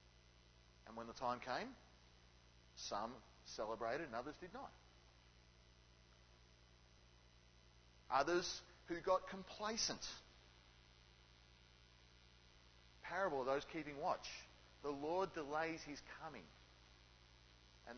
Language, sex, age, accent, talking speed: English, male, 40-59, Australian, 85 wpm